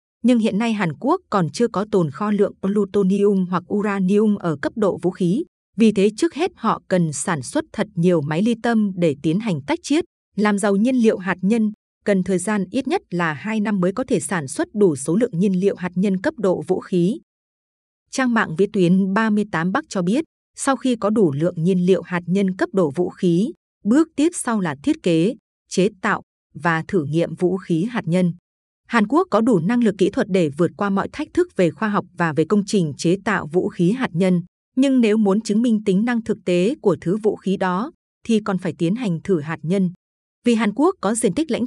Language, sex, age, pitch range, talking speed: Vietnamese, female, 20-39, 180-225 Hz, 230 wpm